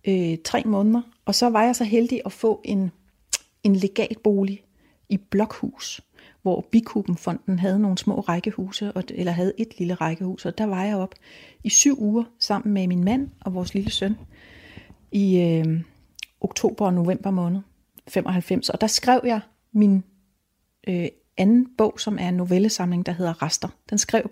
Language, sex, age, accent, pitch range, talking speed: Danish, female, 30-49, native, 185-225 Hz, 170 wpm